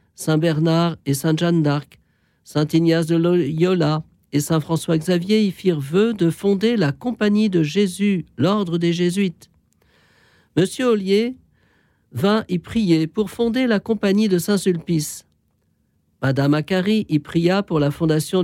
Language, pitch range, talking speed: French, 155-205 Hz, 140 wpm